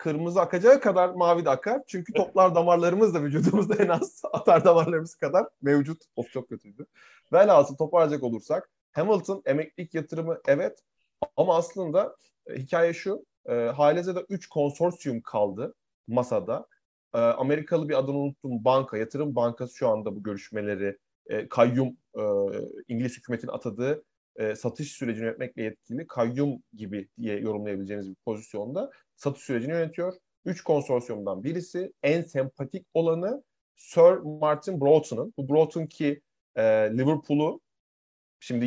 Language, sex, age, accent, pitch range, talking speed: Turkish, male, 30-49, native, 120-170 Hz, 125 wpm